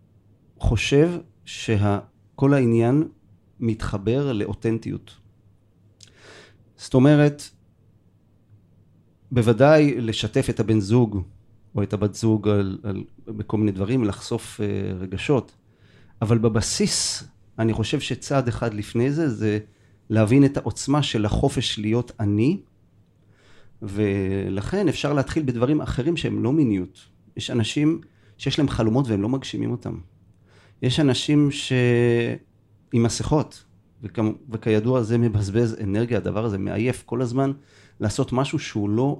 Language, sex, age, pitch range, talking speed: Hebrew, male, 40-59, 105-130 Hz, 115 wpm